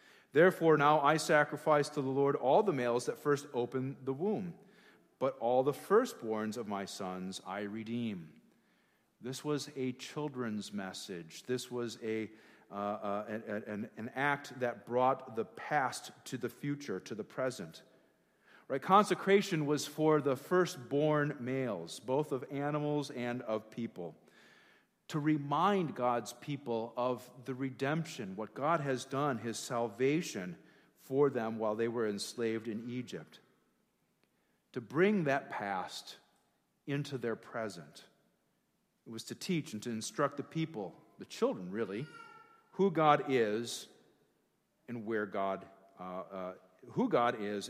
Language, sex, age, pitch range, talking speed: English, male, 40-59, 110-150 Hz, 140 wpm